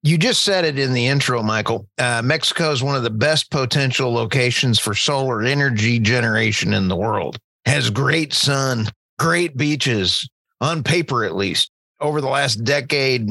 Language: English